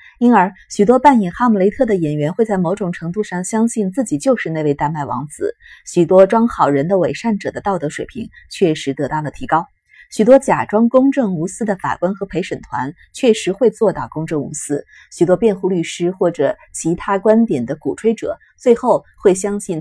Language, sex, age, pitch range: Chinese, female, 20-39, 160-225 Hz